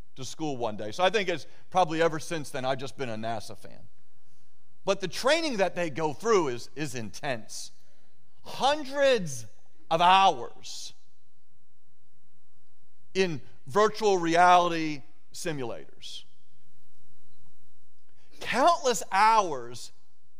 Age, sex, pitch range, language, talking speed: 40-59, male, 165-230 Hz, English, 110 wpm